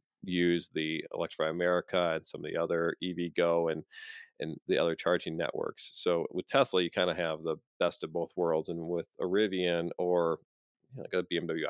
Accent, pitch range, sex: American, 85-90 Hz, male